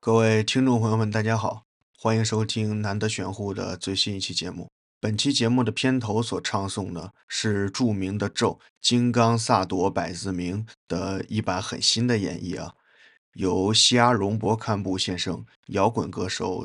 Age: 20-39